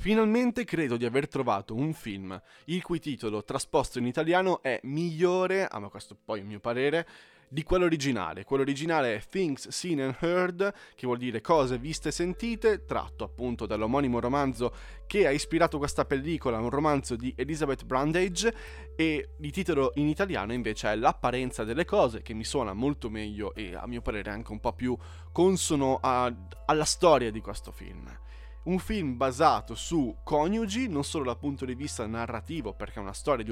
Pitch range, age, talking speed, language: 110-155 Hz, 20-39, 175 wpm, Italian